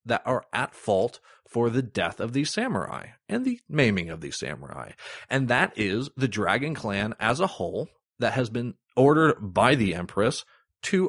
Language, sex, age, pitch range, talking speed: English, male, 30-49, 95-130 Hz, 180 wpm